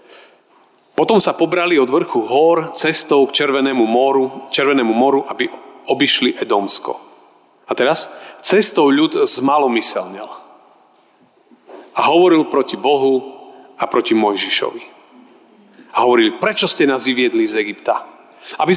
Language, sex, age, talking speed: Slovak, male, 40-59, 115 wpm